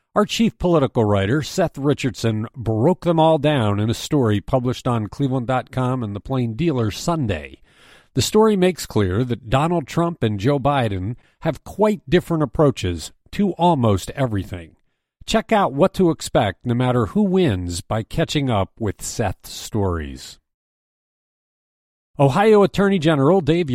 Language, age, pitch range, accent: English, 50-69, 110-170 Hz, American